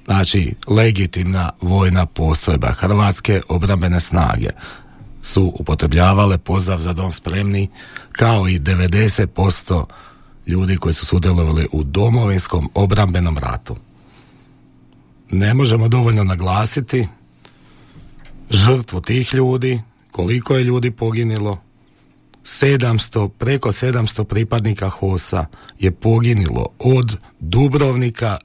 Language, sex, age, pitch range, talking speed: Croatian, male, 40-59, 90-125 Hz, 95 wpm